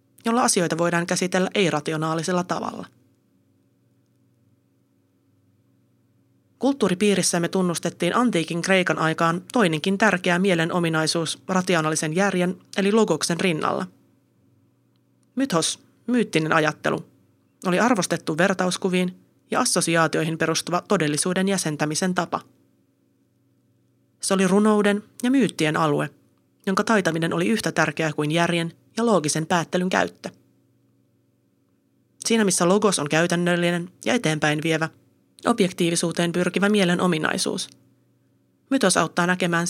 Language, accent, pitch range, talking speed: Finnish, native, 160-195 Hz, 95 wpm